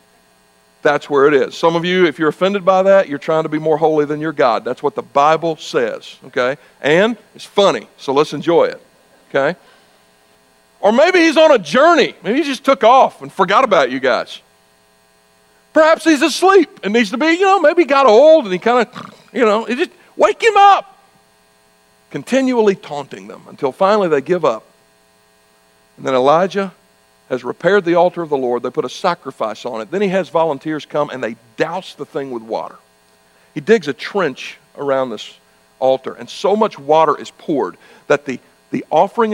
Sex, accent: male, American